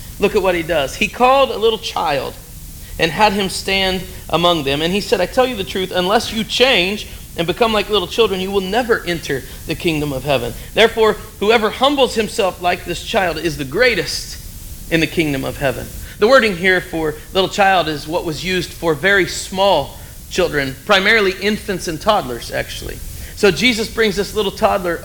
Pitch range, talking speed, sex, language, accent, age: 170-215 Hz, 190 wpm, male, English, American, 40-59